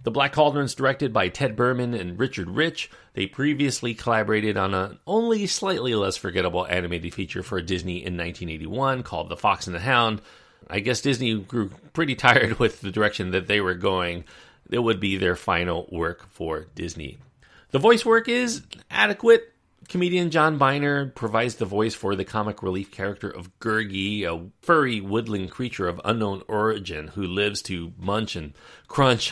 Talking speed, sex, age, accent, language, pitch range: 170 wpm, male, 40-59, American, English, 95-130 Hz